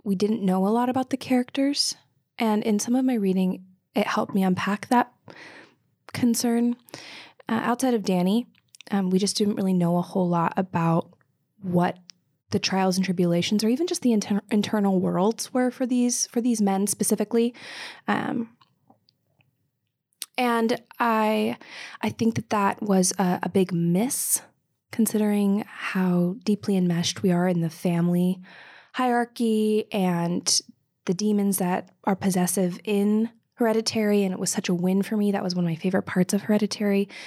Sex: female